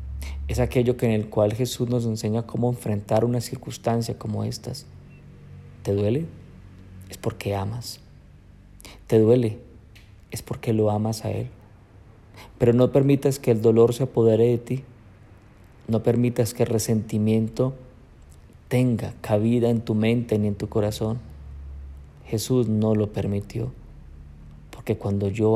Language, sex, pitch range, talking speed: Spanish, male, 100-120 Hz, 140 wpm